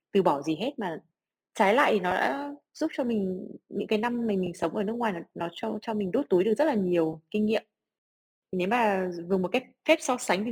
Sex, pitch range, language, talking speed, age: female, 165-215 Hz, Vietnamese, 250 wpm, 20-39